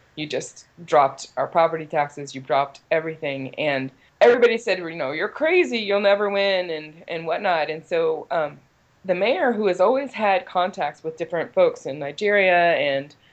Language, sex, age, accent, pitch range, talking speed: English, female, 20-39, American, 155-185 Hz, 170 wpm